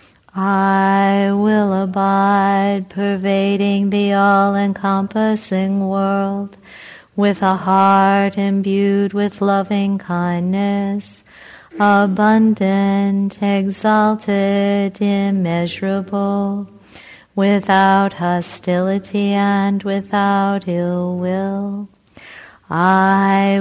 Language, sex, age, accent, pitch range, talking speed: English, female, 40-59, American, 195-200 Hz, 55 wpm